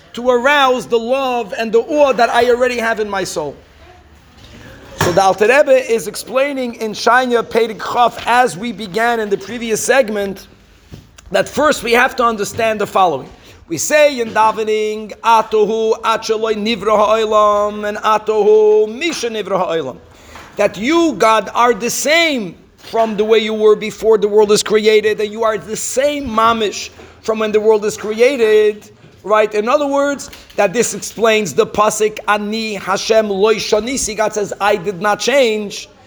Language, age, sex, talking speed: English, 50-69, male, 160 wpm